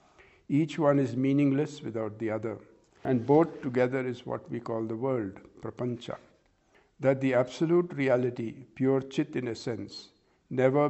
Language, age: English, 60-79